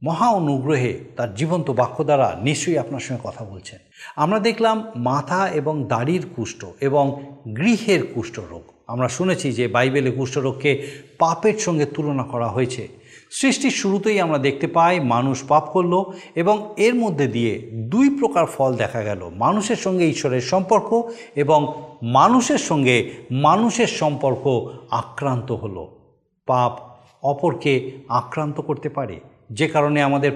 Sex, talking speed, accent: male, 130 wpm, native